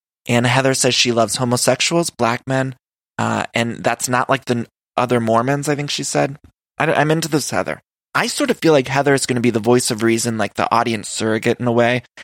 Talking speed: 220 wpm